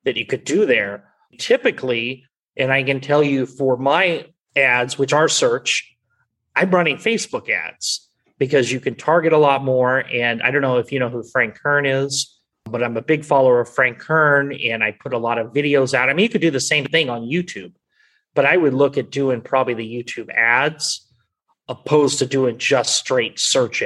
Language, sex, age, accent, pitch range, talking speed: English, male, 30-49, American, 125-150 Hz, 205 wpm